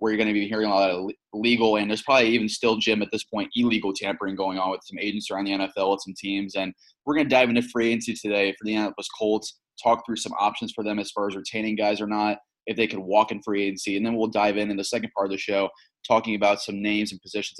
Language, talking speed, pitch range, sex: English, 285 wpm, 100-110 Hz, male